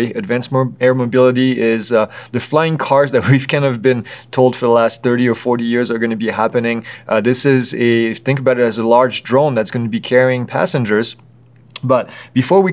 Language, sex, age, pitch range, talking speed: English, male, 30-49, 115-130 Hz, 215 wpm